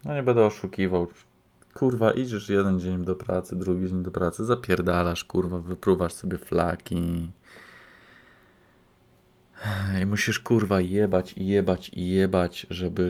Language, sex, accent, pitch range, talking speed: Polish, male, native, 90-95 Hz, 120 wpm